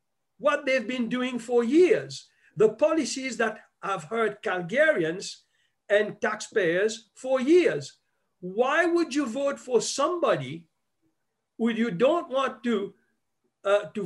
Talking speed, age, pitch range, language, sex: 125 wpm, 50-69, 185-265 Hz, English, male